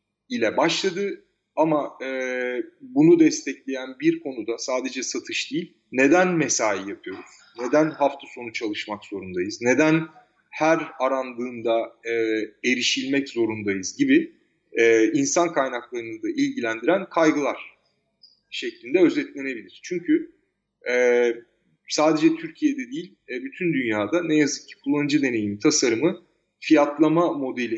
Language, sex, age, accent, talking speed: Turkish, male, 30-49, native, 110 wpm